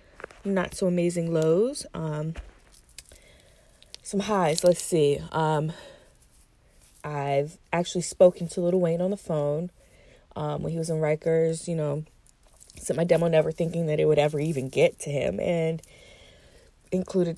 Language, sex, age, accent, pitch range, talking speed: English, female, 20-39, American, 160-190 Hz, 145 wpm